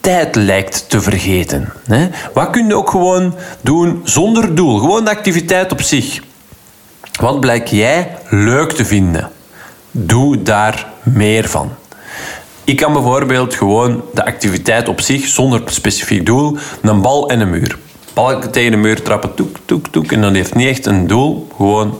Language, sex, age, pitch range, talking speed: Dutch, male, 40-59, 105-145 Hz, 160 wpm